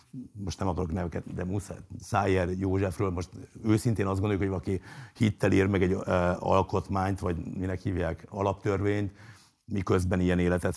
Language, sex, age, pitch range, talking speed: Hungarian, male, 60-79, 90-115 Hz, 145 wpm